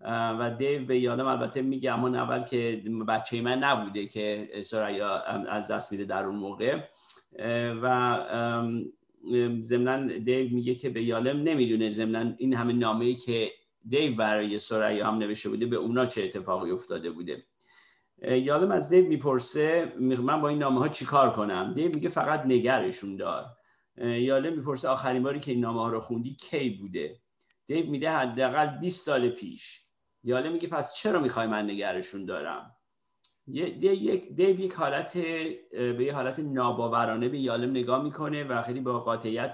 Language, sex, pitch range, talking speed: Persian, male, 115-145 Hz, 155 wpm